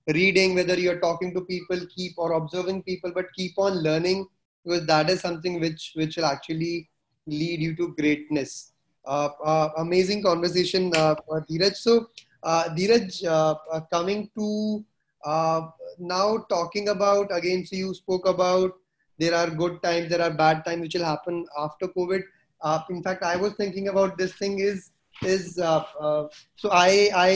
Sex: male